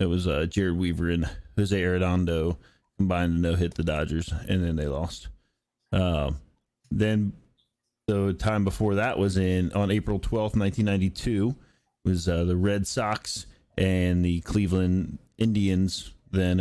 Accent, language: American, English